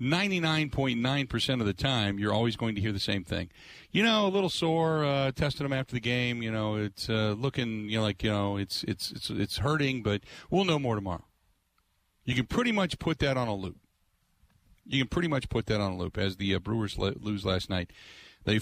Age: 40-59